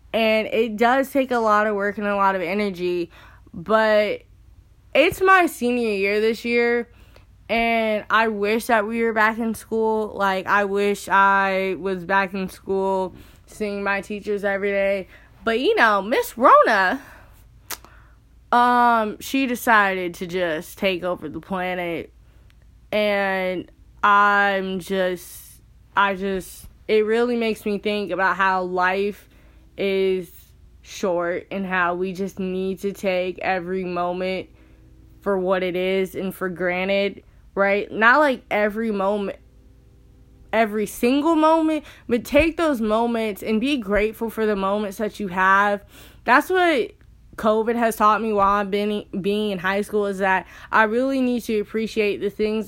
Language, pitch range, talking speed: English, 190-225 Hz, 150 wpm